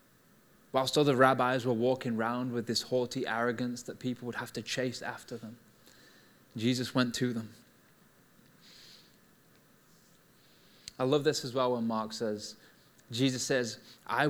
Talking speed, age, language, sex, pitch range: 140 wpm, 20-39, English, male, 125-170 Hz